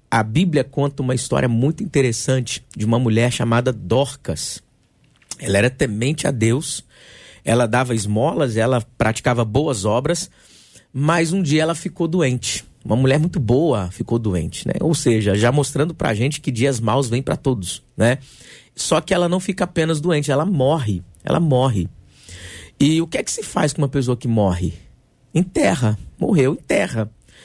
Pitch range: 115-160 Hz